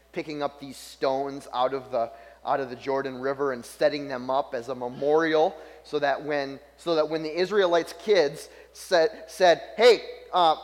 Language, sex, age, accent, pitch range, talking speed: English, male, 30-49, American, 140-170 Hz, 180 wpm